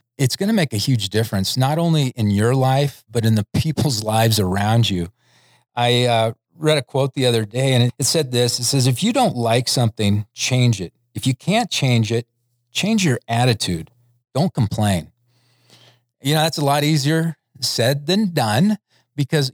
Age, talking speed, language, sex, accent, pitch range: 40-59, 185 wpm, English, male, American, 115-140 Hz